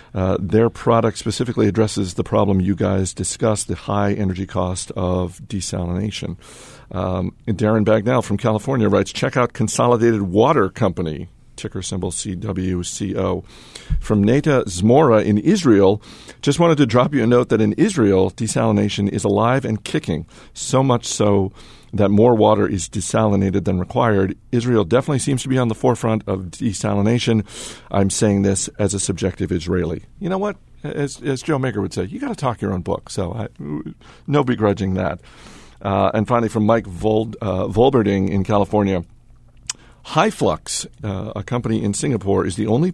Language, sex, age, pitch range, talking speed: English, male, 50-69, 95-115 Hz, 165 wpm